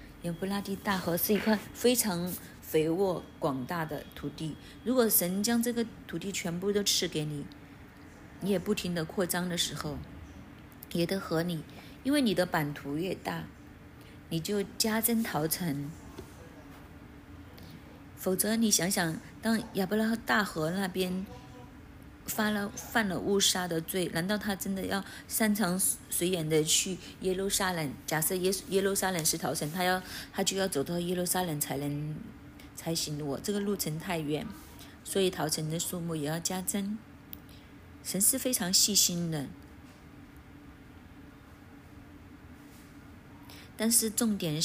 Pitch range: 155-200 Hz